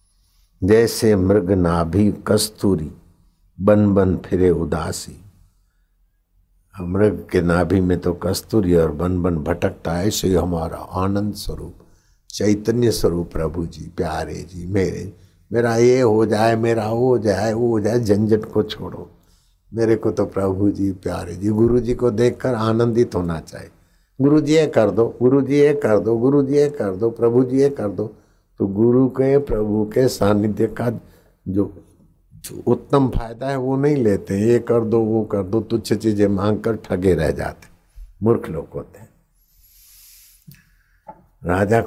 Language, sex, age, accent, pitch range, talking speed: Hindi, male, 60-79, native, 90-110 Hz, 155 wpm